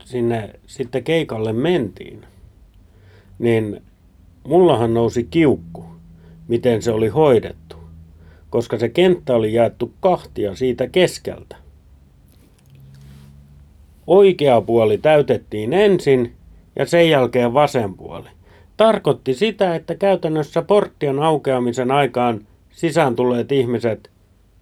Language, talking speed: Finnish, 95 wpm